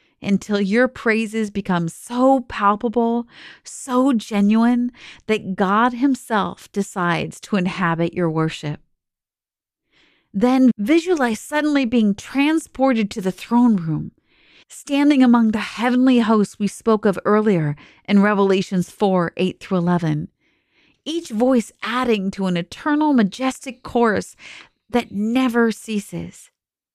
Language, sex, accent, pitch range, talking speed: English, female, American, 190-240 Hz, 110 wpm